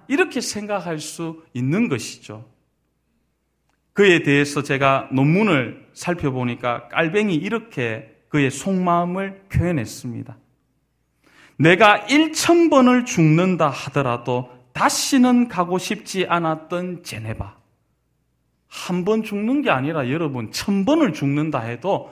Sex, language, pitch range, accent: male, Korean, 130-190 Hz, native